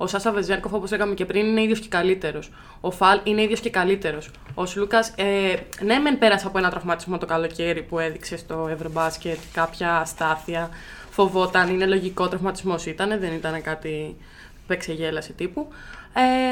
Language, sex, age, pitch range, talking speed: Greek, female, 20-39, 180-230 Hz, 165 wpm